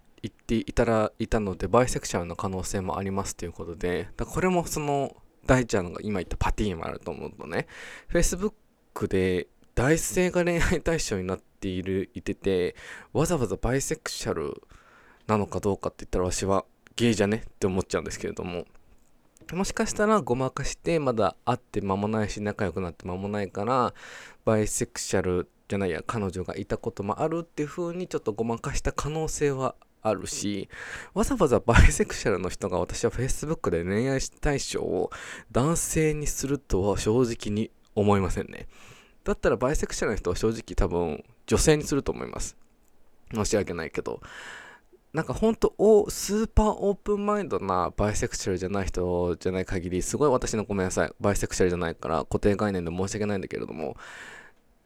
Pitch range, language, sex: 95-155 Hz, Japanese, male